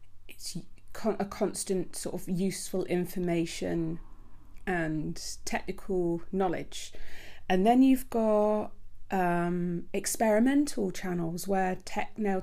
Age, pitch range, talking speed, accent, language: 30-49, 170-205 Hz, 85 wpm, British, English